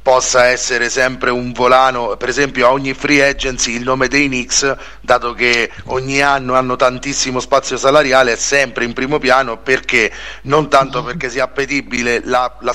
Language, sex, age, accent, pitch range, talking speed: Italian, male, 30-49, native, 120-140 Hz, 170 wpm